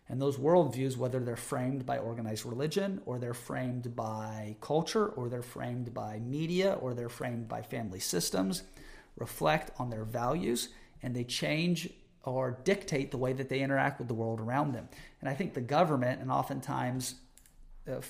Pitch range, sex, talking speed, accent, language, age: 125-185 Hz, male, 170 wpm, American, English, 40-59